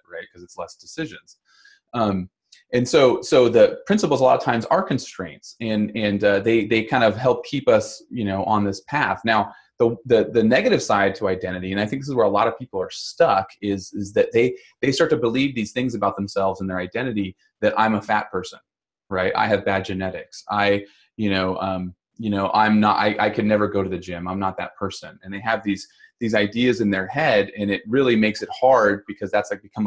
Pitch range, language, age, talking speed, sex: 95-120 Hz, English, 20-39, 235 wpm, male